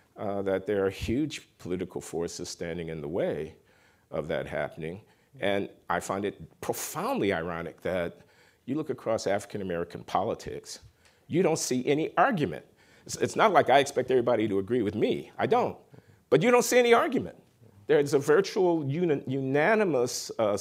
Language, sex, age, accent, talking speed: English, male, 50-69, American, 160 wpm